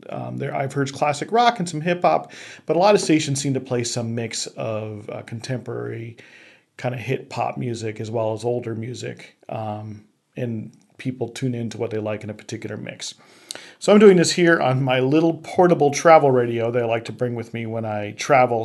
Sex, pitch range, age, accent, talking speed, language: male, 115-140 Hz, 40-59, American, 210 wpm, English